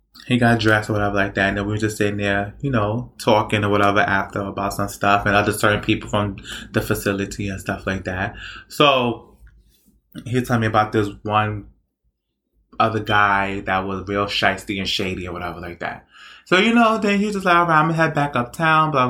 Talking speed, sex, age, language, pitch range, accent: 215 wpm, male, 20-39, English, 105-125 Hz, American